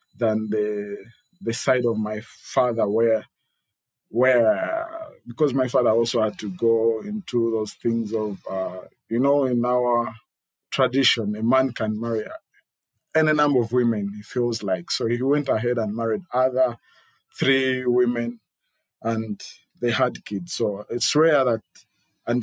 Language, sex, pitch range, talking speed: English, male, 110-135 Hz, 145 wpm